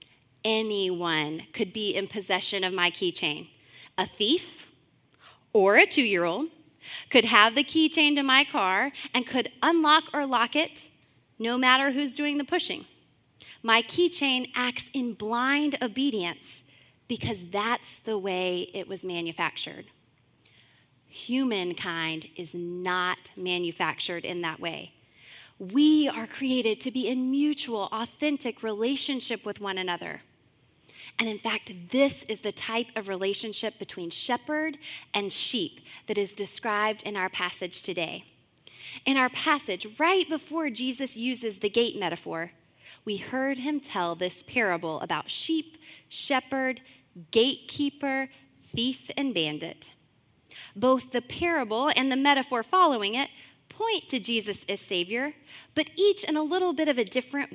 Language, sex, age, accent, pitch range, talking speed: English, female, 20-39, American, 185-275 Hz, 135 wpm